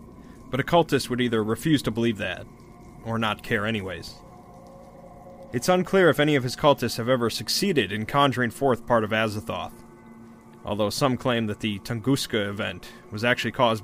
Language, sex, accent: English, male, American